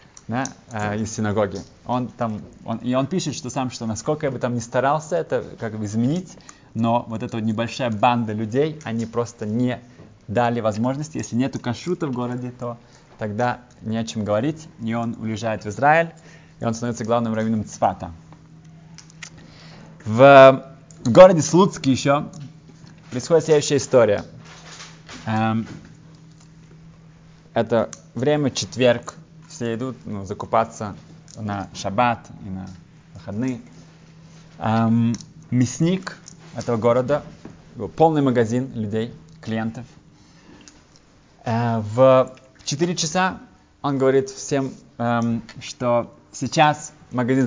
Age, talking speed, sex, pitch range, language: 20-39, 115 wpm, male, 115-155 Hz, Russian